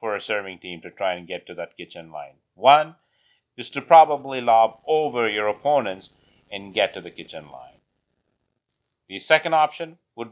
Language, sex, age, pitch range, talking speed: English, male, 30-49, 100-140 Hz, 170 wpm